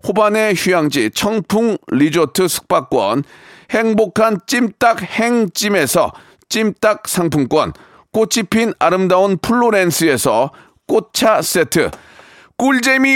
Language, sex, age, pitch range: Korean, male, 40-59, 180-230 Hz